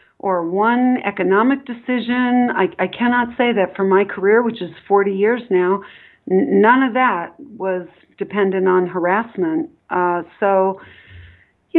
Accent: American